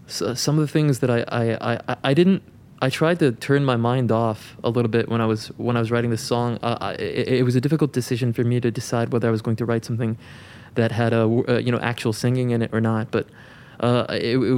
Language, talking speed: English, 270 wpm